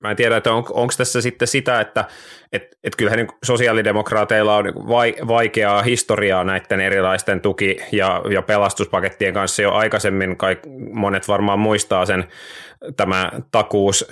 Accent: native